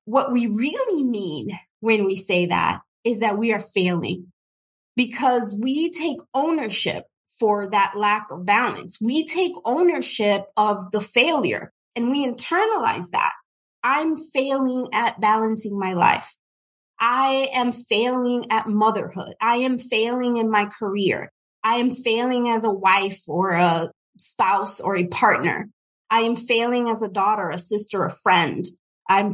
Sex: female